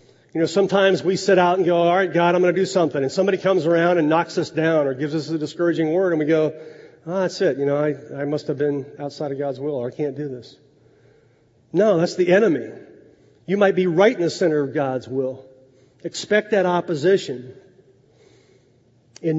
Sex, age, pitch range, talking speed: male, 40-59, 155-255 Hz, 215 wpm